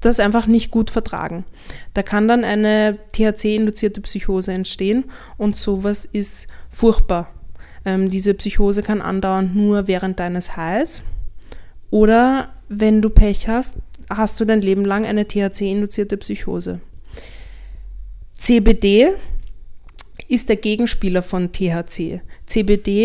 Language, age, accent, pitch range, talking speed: German, 20-39, German, 190-225 Hz, 115 wpm